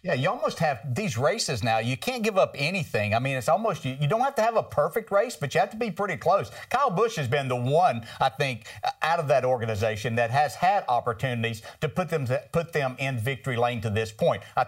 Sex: male